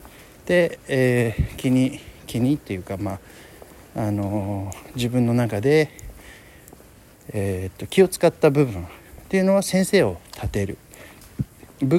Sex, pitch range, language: male, 100-160 Hz, Japanese